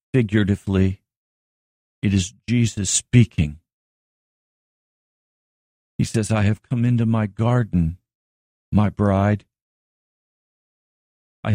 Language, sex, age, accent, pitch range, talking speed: English, male, 50-69, American, 95-130 Hz, 85 wpm